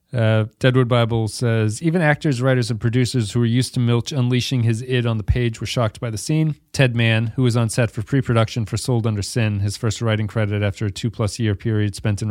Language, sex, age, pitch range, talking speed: English, male, 40-59, 110-130 Hz, 235 wpm